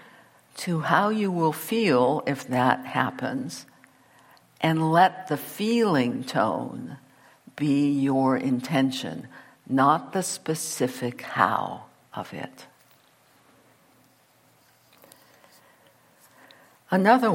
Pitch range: 130-175 Hz